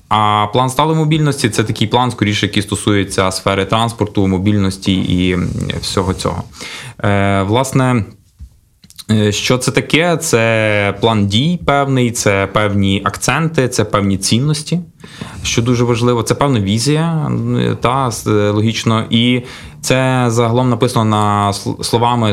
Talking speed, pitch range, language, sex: 120 wpm, 100-125 Hz, Ukrainian, male